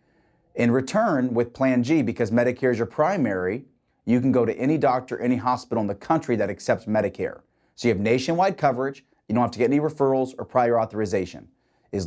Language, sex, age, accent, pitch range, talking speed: English, male, 30-49, American, 110-140 Hz, 200 wpm